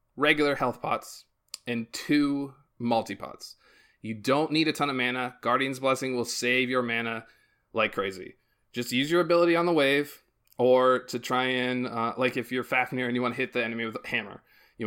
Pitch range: 120-145 Hz